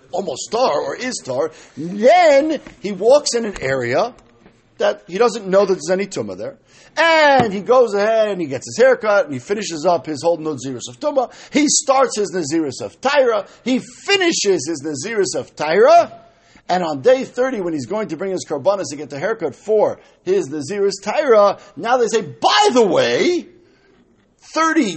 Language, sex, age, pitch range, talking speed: English, male, 50-69, 170-270 Hz, 185 wpm